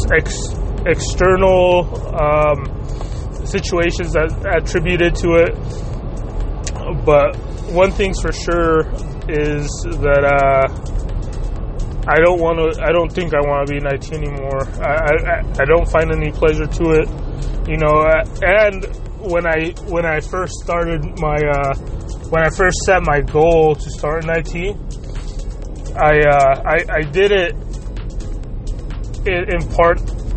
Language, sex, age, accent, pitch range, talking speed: English, male, 20-39, American, 135-170 Hz, 130 wpm